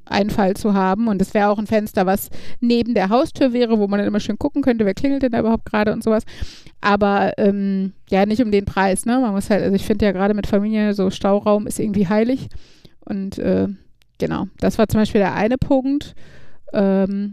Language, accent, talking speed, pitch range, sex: German, German, 220 wpm, 200-225 Hz, female